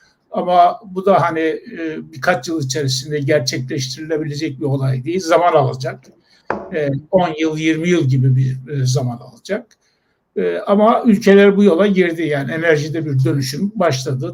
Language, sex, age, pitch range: Turkish, male, 60-79, 145-205 Hz